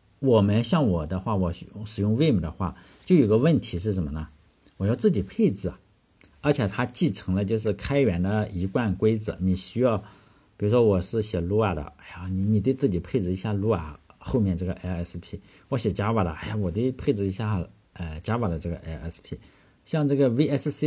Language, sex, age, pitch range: Chinese, male, 50-69, 90-125 Hz